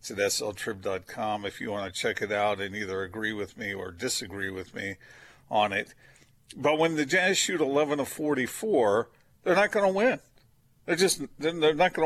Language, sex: English, male